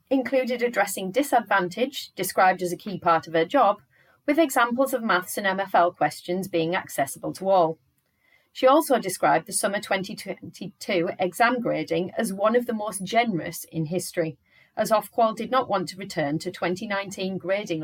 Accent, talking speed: British, 160 wpm